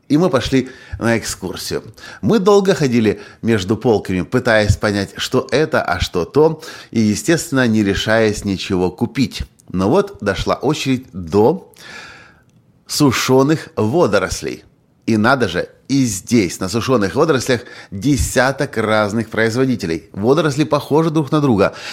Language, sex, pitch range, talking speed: Russian, male, 100-140 Hz, 125 wpm